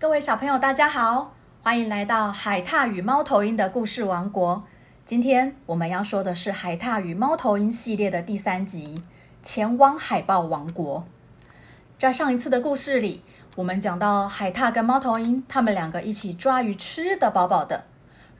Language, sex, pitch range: Chinese, female, 195-270 Hz